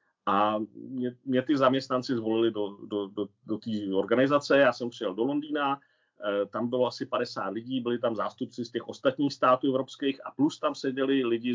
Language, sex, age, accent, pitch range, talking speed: Czech, male, 40-59, native, 110-140 Hz, 170 wpm